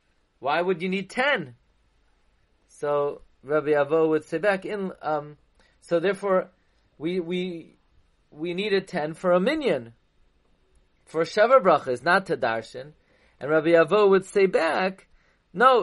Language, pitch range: English, 150-185 Hz